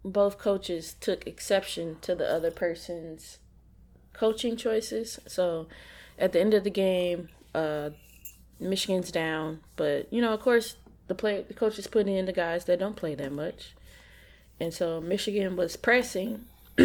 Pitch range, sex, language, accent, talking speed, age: 165-215 Hz, female, English, American, 155 wpm, 20-39